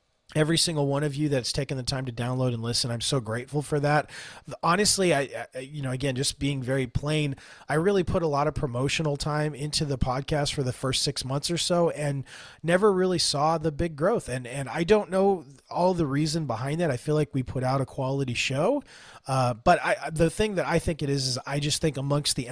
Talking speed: 235 wpm